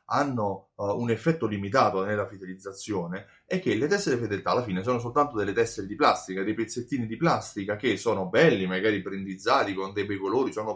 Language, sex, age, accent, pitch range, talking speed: Italian, male, 30-49, native, 100-145 Hz, 190 wpm